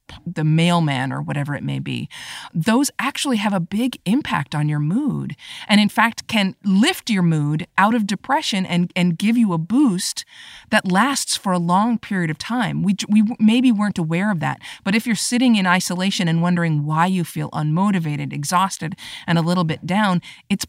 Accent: American